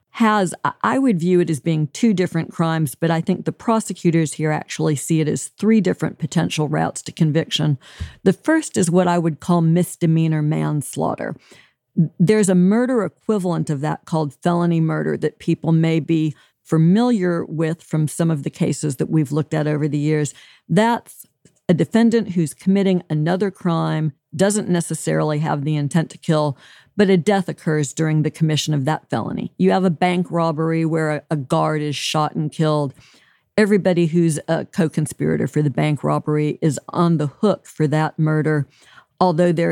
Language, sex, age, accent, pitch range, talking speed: English, female, 50-69, American, 155-185 Hz, 175 wpm